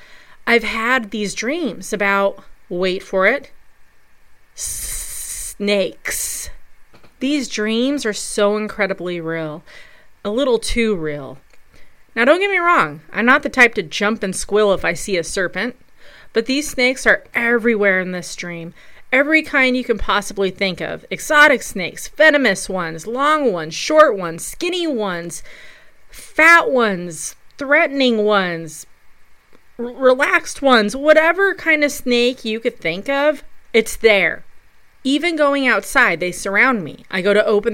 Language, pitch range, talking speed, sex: English, 190-255 Hz, 140 wpm, female